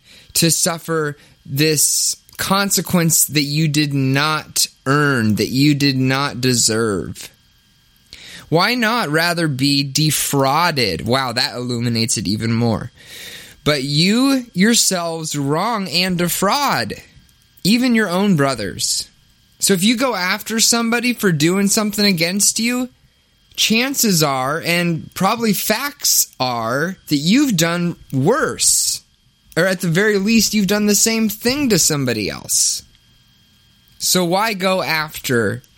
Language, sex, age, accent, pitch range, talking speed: English, male, 20-39, American, 125-190 Hz, 120 wpm